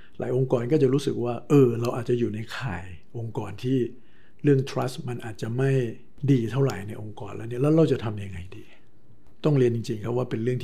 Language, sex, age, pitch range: Thai, male, 60-79, 110-130 Hz